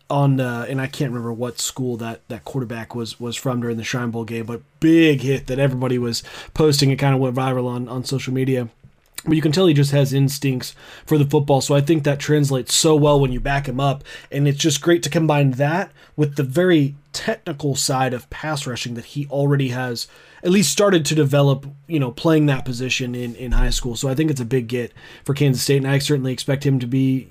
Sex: male